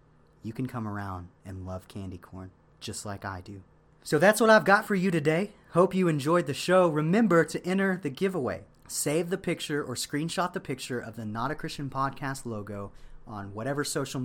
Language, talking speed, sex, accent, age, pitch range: English, 200 wpm, male, American, 30-49, 115-150 Hz